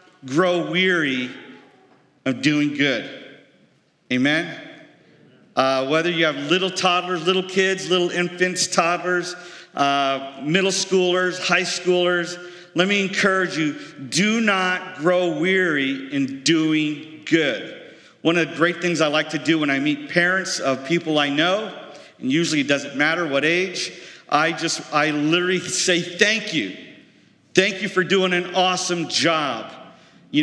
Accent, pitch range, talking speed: American, 155-185 Hz, 140 wpm